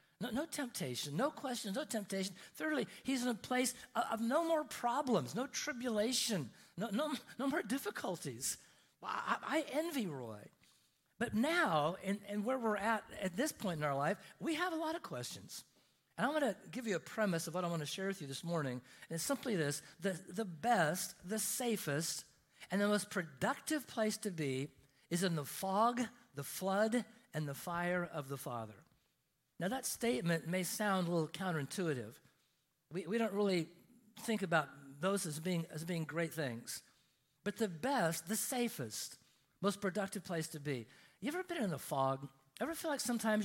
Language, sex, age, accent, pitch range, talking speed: English, male, 50-69, American, 160-235 Hz, 185 wpm